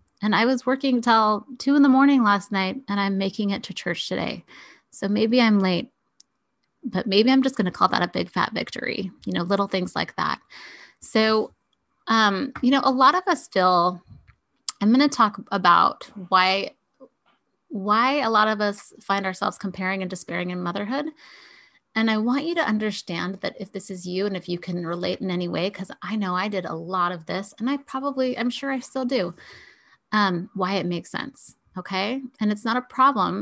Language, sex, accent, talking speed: English, female, American, 205 wpm